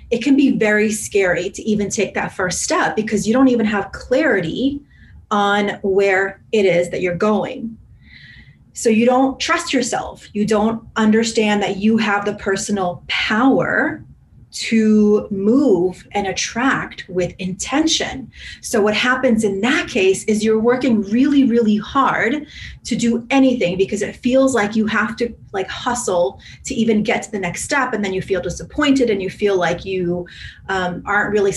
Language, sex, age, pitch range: English, female, 30-49, 190-235 Hz